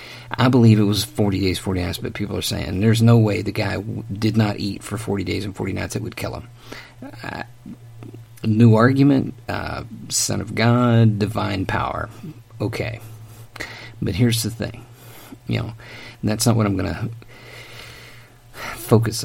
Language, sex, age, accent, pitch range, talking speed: English, male, 50-69, American, 110-120 Hz, 170 wpm